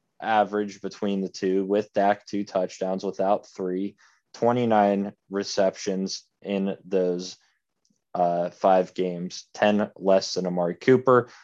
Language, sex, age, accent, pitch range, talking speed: English, male, 20-39, American, 95-115 Hz, 115 wpm